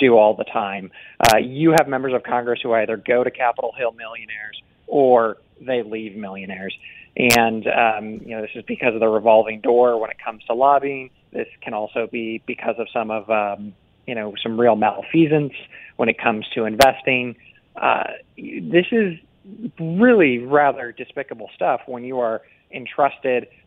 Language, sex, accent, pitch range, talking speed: English, male, American, 115-165 Hz, 170 wpm